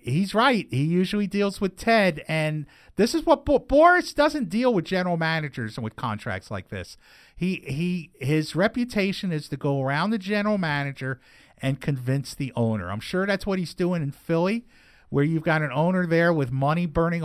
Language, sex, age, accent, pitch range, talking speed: English, male, 50-69, American, 145-195 Hz, 190 wpm